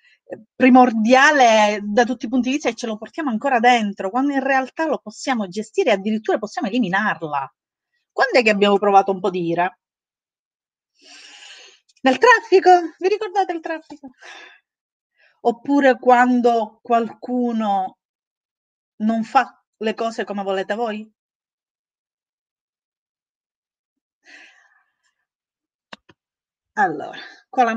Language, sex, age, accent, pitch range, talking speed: Italian, female, 30-49, native, 220-280 Hz, 110 wpm